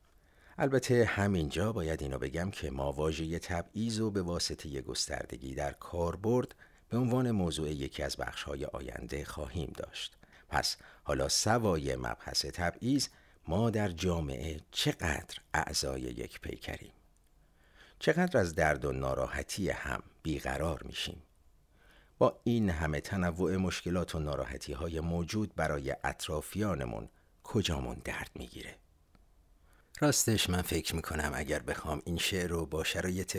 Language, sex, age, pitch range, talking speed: Persian, male, 50-69, 75-90 Hz, 125 wpm